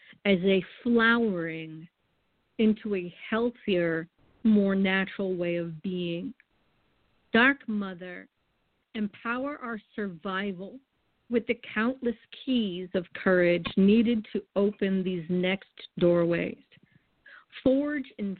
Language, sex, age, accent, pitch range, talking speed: English, female, 50-69, American, 180-225 Hz, 100 wpm